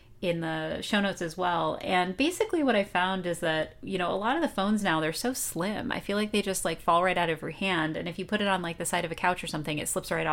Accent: American